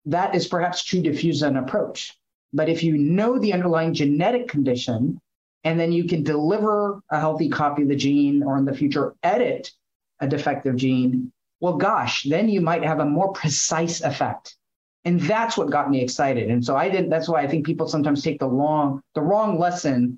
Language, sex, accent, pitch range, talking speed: English, male, American, 130-170 Hz, 195 wpm